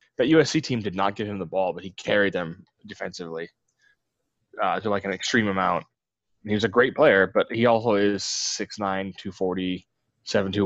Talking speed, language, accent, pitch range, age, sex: 180 wpm, English, American, 95-130 Hz, 10-29, male